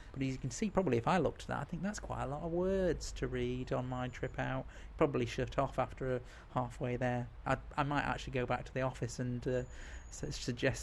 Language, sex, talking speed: English, male, 245 wpm